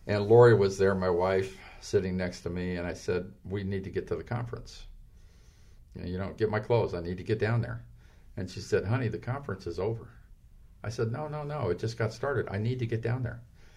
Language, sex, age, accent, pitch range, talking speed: English, male, 50-69, American, 90-110 Hz, 240 wpm